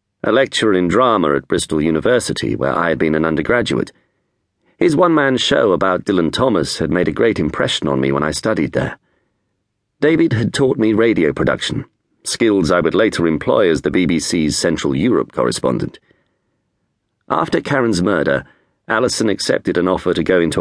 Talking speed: 165 wpm